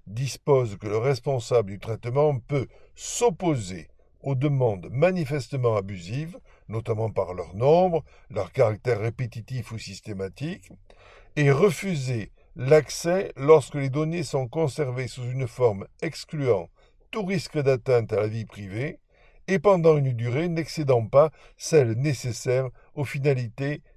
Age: 60-79